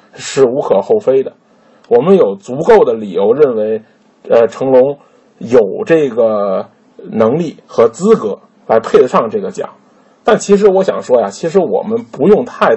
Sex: male